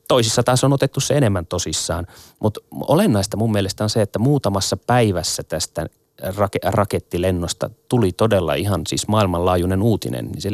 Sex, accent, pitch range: male, native, 90-120 Hz